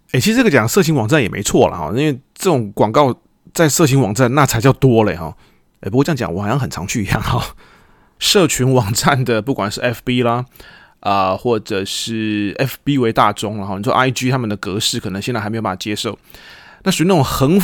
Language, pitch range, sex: Chinese, 110-140 Hz, male